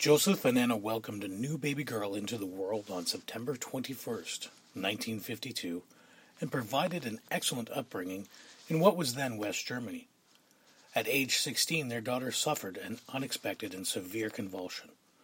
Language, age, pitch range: English, 40-59, 110-155 Hz